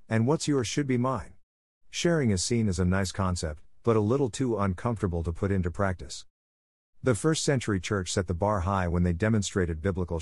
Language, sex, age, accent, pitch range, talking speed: English, male, 50-69, American, 90-115 Hz, 200 wpm